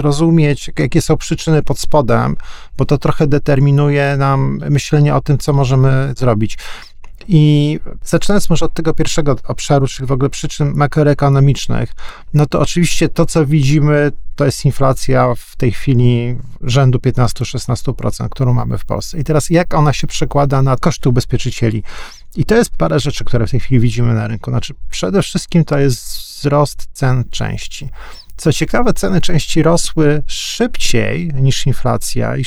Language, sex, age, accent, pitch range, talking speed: Polish, male, 40-59, native, 125-150 Hz, 155 wpm